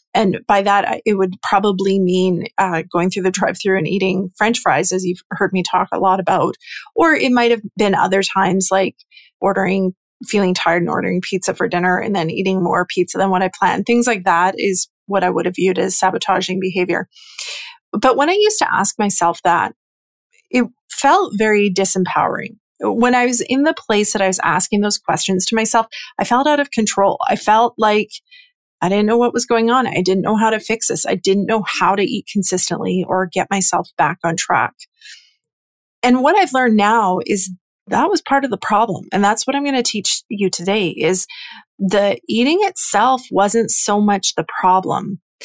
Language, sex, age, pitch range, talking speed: English, female, 30-49, 185-230 Hz, 200 wpm